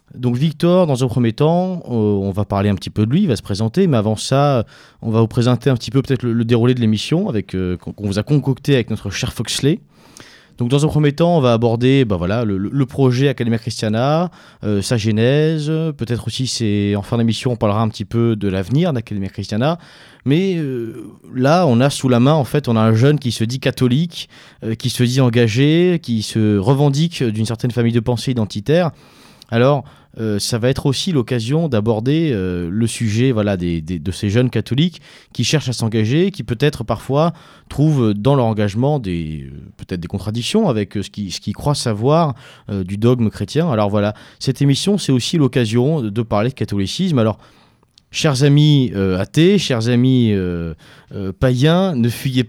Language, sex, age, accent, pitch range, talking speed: French, male, 30-49, French, 110-145 Hz, 205 wpm